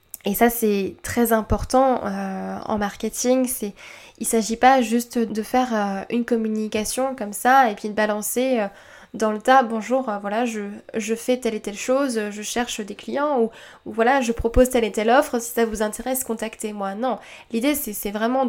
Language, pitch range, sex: French, 210-240 Hz, female